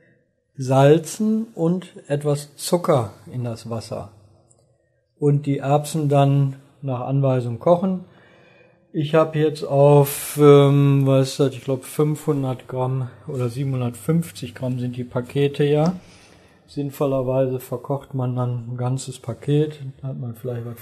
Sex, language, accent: male, German, German